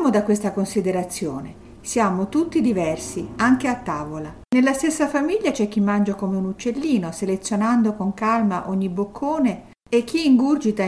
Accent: native